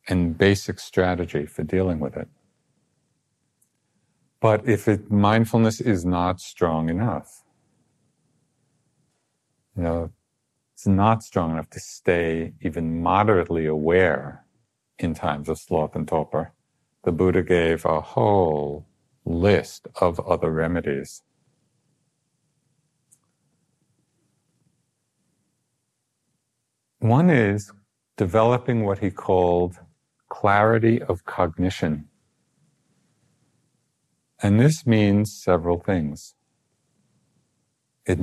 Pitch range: 85-110 Hz